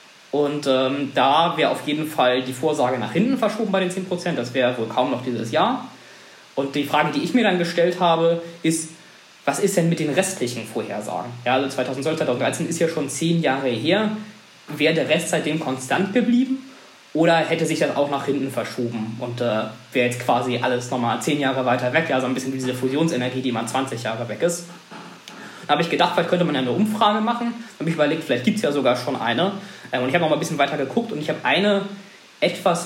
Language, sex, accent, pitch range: German, male, German, 125-175 Hz